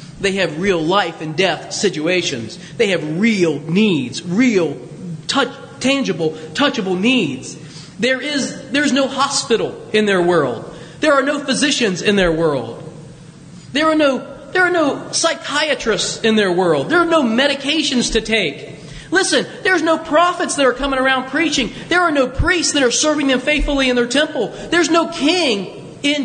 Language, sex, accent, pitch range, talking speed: English, male, American, 165-260 Hz, 165 wpm